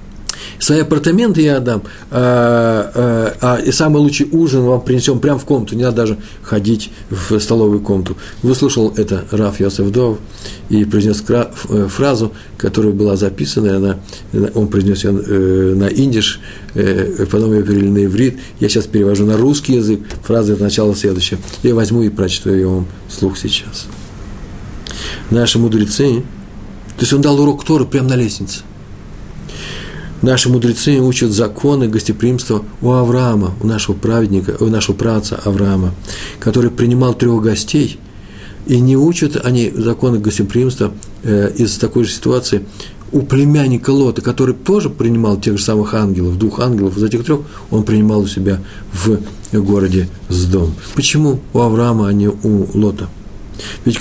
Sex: male